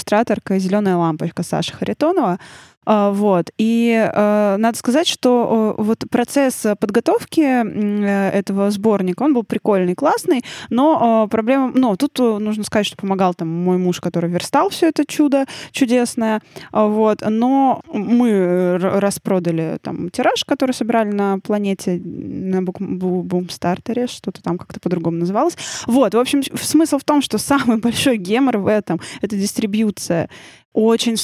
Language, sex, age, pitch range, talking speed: Russian, female, 20-39, 200-240 Hz, 130 wpm